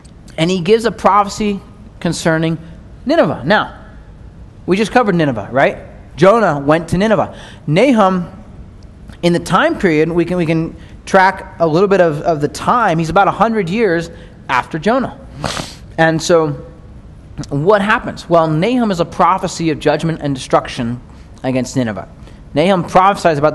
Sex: male